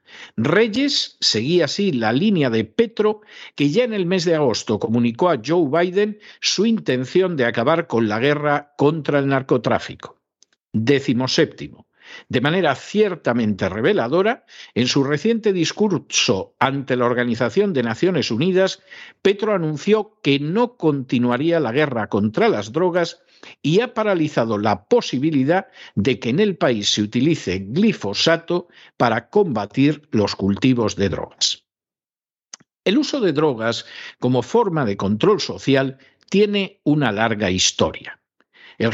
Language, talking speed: Spanish, 135 wpm